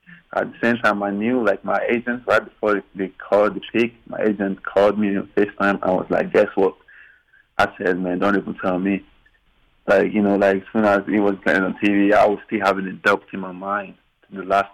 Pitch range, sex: 90-100 Hz, male